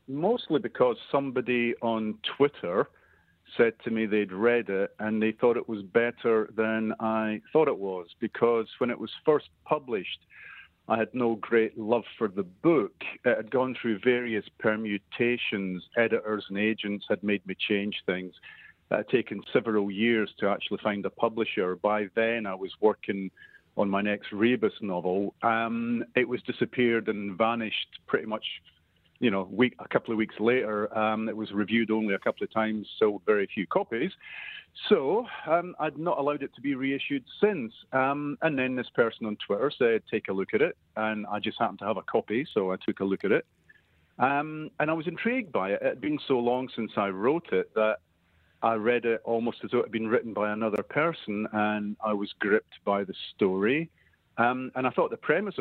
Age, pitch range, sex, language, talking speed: 50-69, 105-125 Hz, male, English, 195 wpm